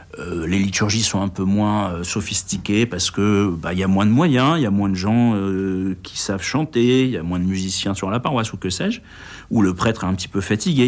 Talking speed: 255 wpm